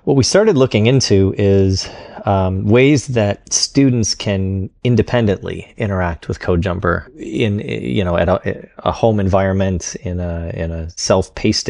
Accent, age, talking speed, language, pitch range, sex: American, 30-49, 150 wpm, English, 90-105 Hz, male